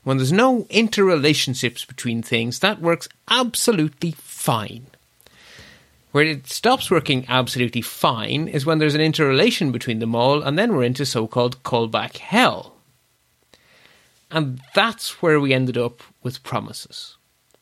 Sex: male